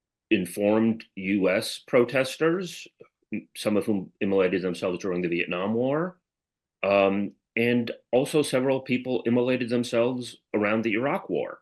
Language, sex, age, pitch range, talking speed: English, male, 40-59, 90-120 Hz, 120 wpm